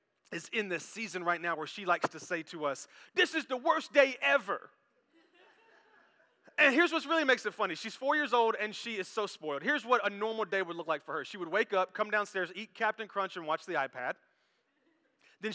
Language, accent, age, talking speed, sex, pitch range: English, American, 30-49, 230 wpm, male, 180-300 Hz